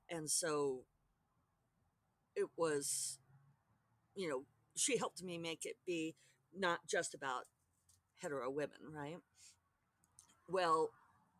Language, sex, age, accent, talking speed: English, female, 40-59, American, 100 wpm